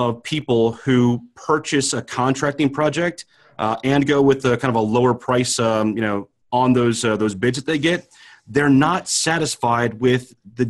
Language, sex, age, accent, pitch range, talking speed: English, male, 30-49, American, 120-145 Hz, 185 wpm